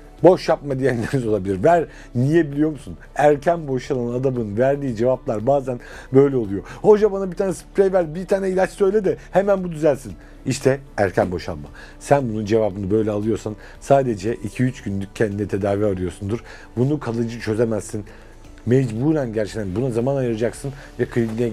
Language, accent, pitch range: Turkish, native, 115-155 Hz